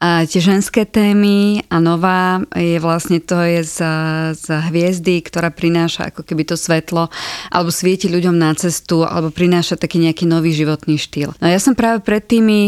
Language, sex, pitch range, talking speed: Slovak, female, 165-190 Hz, 170 wpm